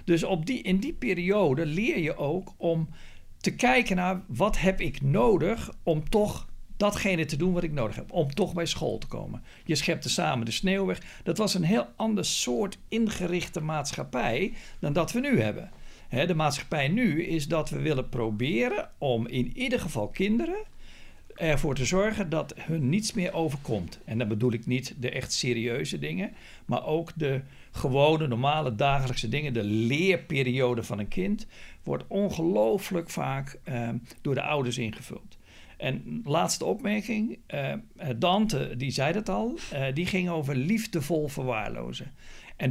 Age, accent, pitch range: 60-79, Dutch, 130-190 Hz